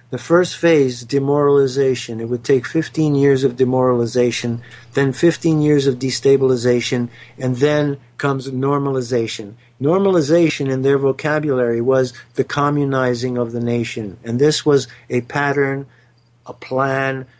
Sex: male